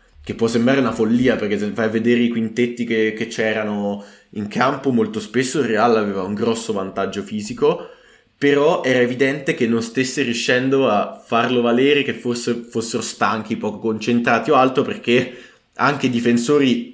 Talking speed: 165 wpm